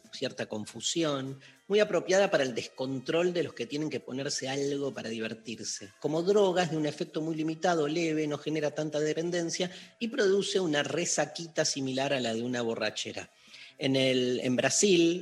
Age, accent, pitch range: 30-49, Argentinian, 130-165 Hz